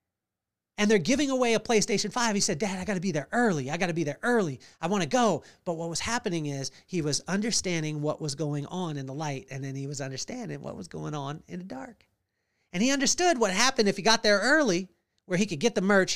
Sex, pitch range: male, 140-200 Hz